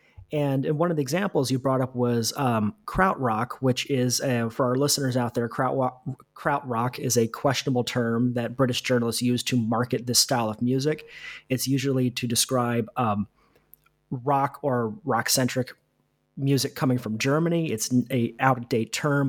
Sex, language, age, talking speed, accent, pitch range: male, English, 30-49, 170 wpm, American, 115-140 Hz